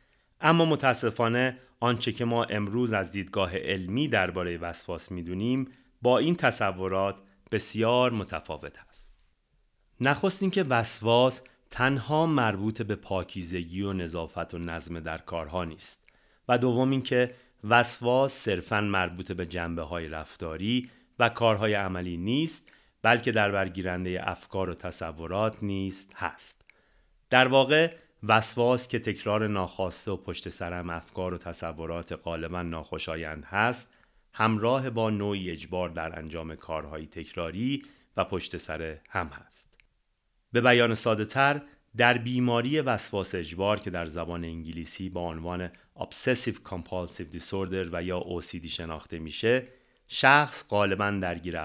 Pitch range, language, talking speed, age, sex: 85-120 Hz, Persian, 125 wpm, 40-59, male